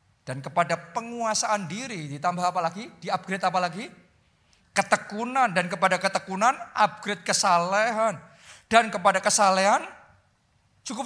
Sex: male